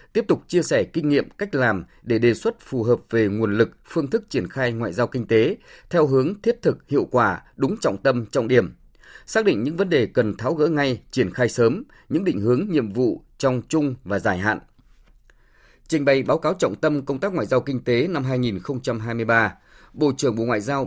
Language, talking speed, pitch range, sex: Vietnamese, 220 wpm, 115-145 Hz, male